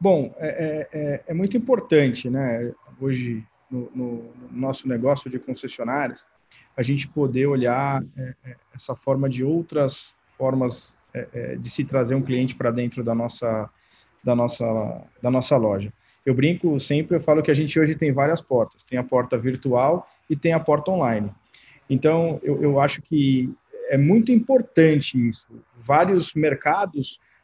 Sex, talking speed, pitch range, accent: male, 145 wpm, 130-170 Hz, Brazilian